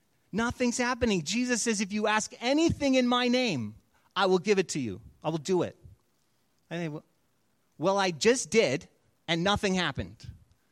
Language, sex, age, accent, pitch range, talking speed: English, male, 30-49, American, 170-250 Hz, 155 wpm